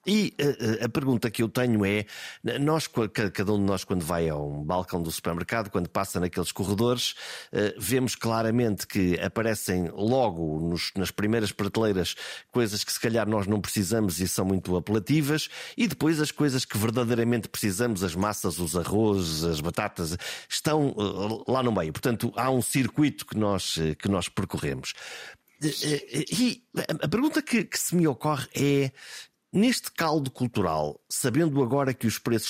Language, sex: Portuguese, male